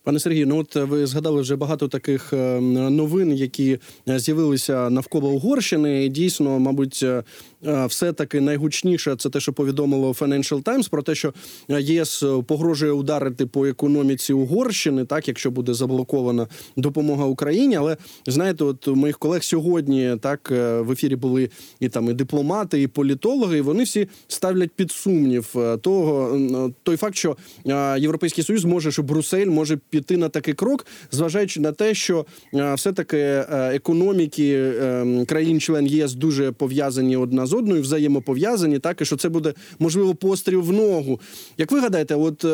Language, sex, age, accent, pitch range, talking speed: Ukrainian, male, 20-39, native, 135-170 Hz, 150 wpm